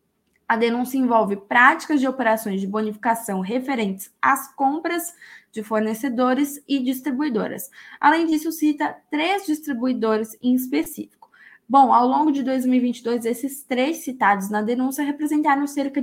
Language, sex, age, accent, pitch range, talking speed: Portuguese, female, 10-29, Brazilian, 220-280 Hz, 125 wpm